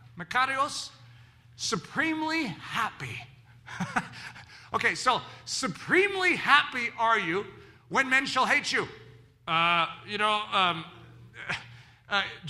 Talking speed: 90 wpm